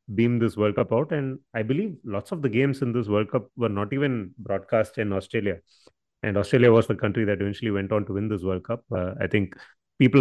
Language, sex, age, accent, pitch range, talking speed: English, male, 30-49, Indian, 105-125 Hz, 235 wpm